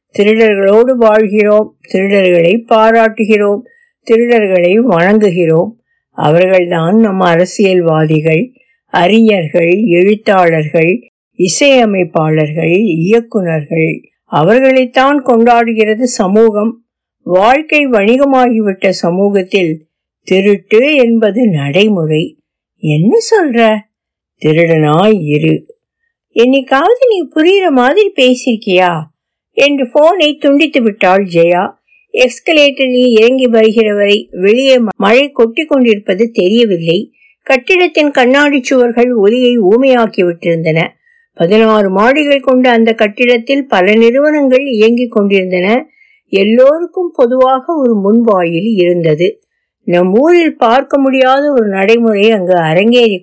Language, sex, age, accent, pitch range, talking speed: Tamil, female, 60-79, native, 190-265 Hz, 55 wpm